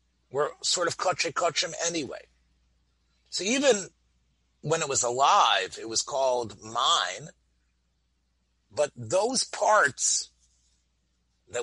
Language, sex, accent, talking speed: English, male, American, 105 wpm